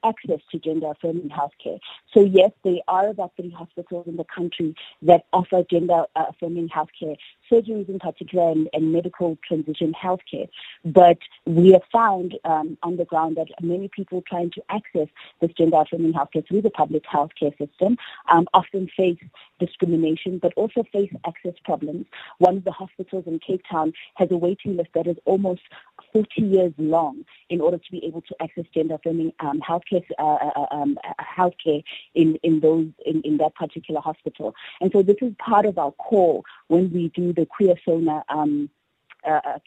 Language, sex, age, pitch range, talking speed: English, female, 30-49, 160-190 Hz, 175 wpm